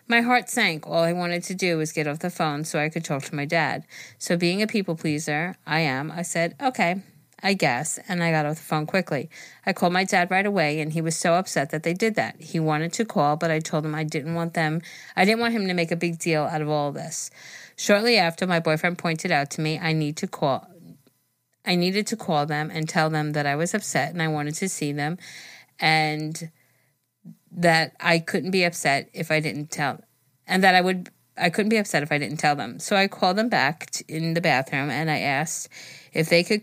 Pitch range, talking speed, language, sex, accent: 150-185 Hz, 240 wpm, English, female, American